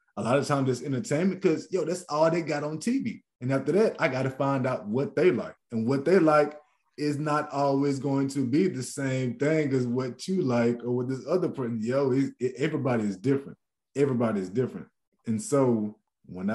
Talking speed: 205 wpm